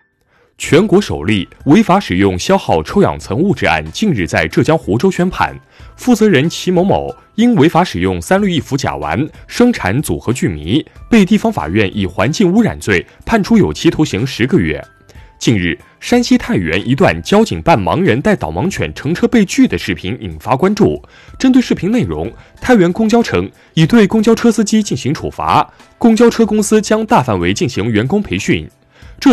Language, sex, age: Chinese, male, 20-39